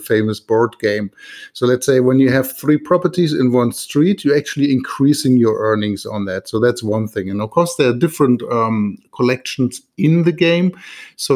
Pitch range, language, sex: 110-140 Hz, English, male